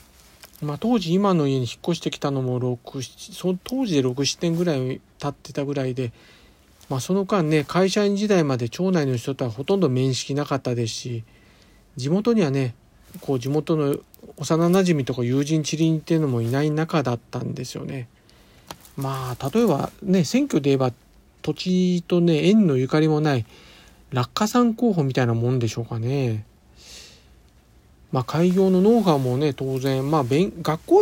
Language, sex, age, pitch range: Japanese, male, 40-59, 130-180 Hz